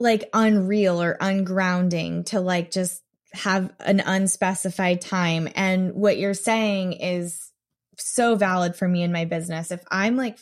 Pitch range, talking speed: 175-200 Hz, 150 wpm